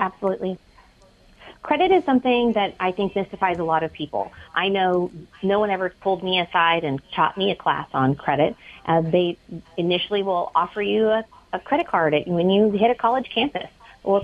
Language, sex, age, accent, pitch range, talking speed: English, female, 30-49, American, 170-230 Hz, 185 wpm